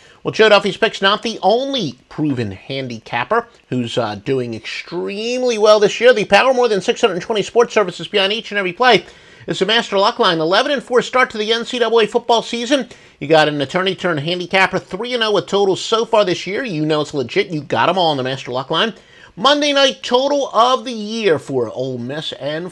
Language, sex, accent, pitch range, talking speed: English, male, American, 145-220 Hz, 200 wpm